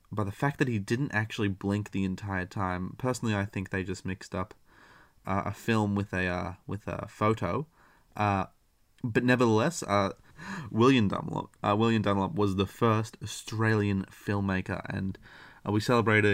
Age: 20-39